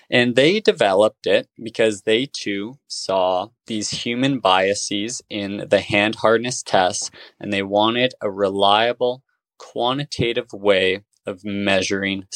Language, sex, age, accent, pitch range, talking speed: English, male, 20-39, American, 100-130 Hz, 120 wpm